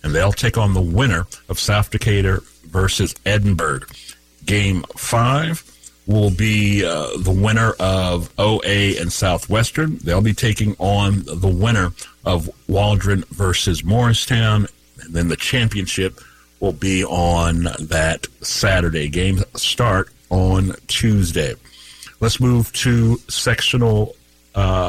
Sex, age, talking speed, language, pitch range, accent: male, 50-69, 120 wpm, English, 90-110 Hz, American